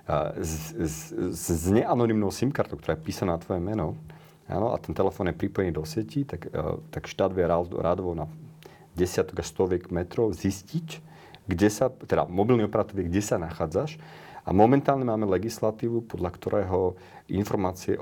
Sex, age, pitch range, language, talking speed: male, 40-59, 90-115 Hz, Slovak, 155 wpm